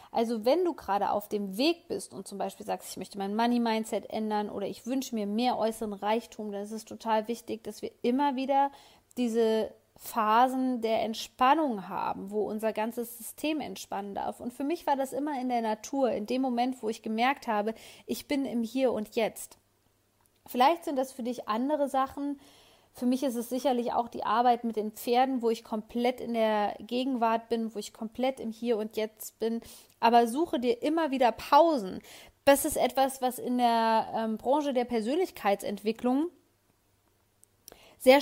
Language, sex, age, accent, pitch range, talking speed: German, female, 20-39, German, 220-270 Hz, 180 wpm